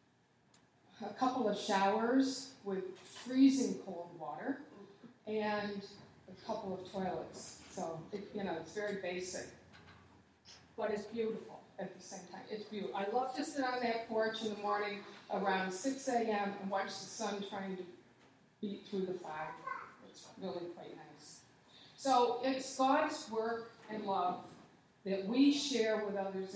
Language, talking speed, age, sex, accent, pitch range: English, 150 wpm, 50-69, female, American, 195-235 Hz